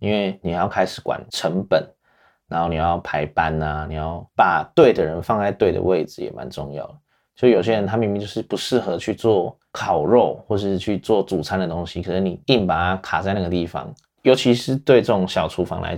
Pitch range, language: 85-105 Hz, Chinese